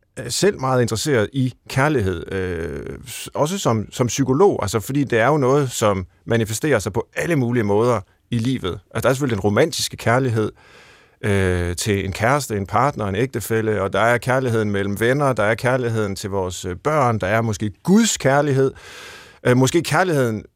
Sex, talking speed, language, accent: male, 175 wpm, Danish, native